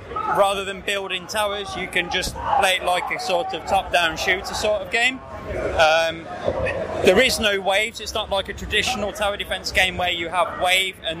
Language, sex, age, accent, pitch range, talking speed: English, male, 20-39, British, 180-210 Hz, 195 wpm